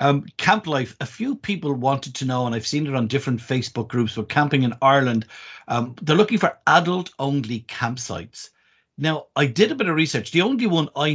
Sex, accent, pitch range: male, Irish, 110-145 Hz